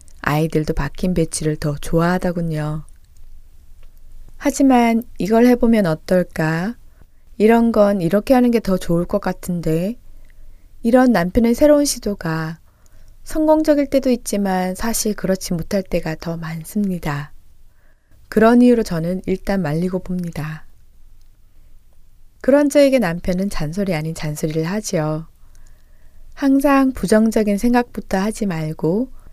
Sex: female